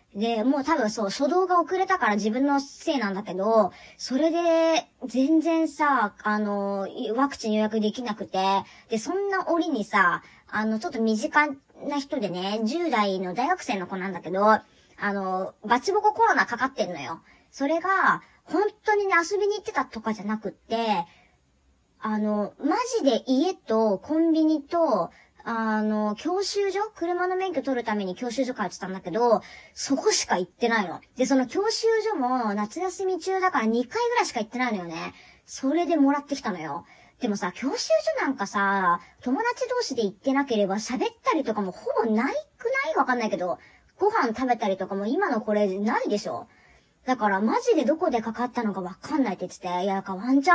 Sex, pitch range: male, 205-330 Hz